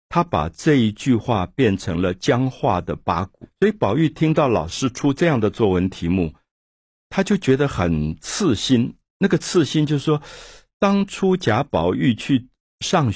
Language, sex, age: Chinese, male, 60-79